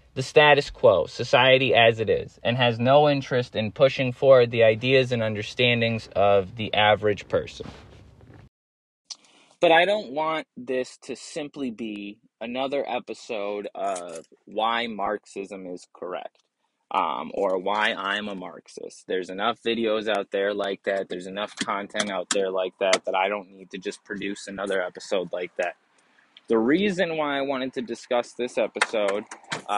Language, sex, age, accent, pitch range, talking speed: English, male, 20-39, American, 110-155 Hz, 155 wpm